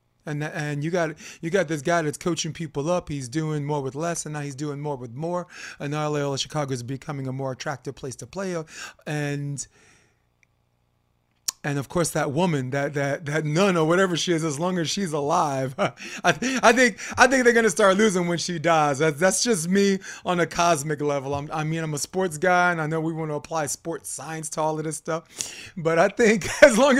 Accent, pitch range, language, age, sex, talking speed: American, 135-180 Hz, English, 30-49, male, 225 wpm